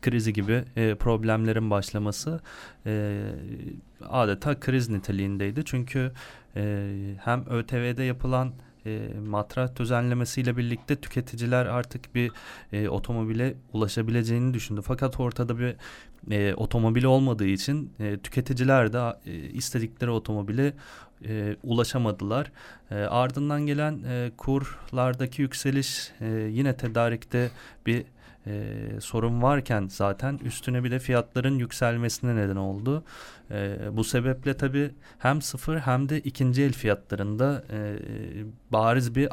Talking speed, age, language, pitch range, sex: 115 wpm, 30-49, Turkish, 110-130 Hz, male